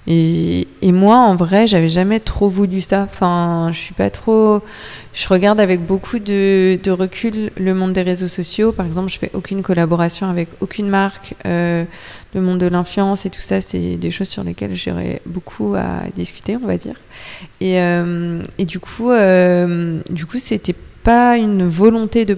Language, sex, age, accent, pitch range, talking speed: French, female, 20-39, French, 170-195 Hz, 180 wpm